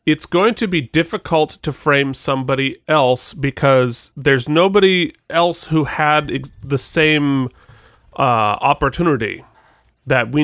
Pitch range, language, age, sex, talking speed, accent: 130-175 Hz, English, 30-49, male, 120 wpm, American